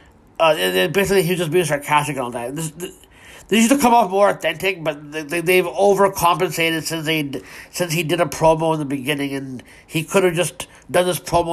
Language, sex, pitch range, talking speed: English, male, 145-170 Hz, 225 wpm